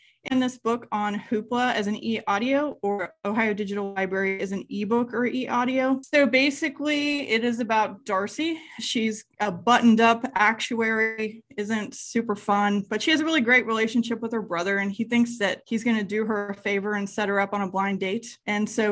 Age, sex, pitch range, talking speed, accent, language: 20-39, female, 205-255 Hz, 195 wpm, American, English